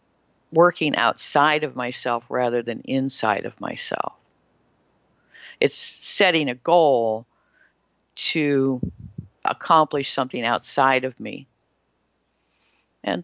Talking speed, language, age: 90 wpm, English, 50-69